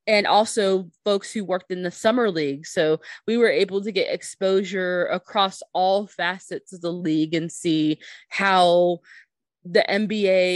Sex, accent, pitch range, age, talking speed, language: female, American, 175-215 Hz, 20-39, 155 wpm, English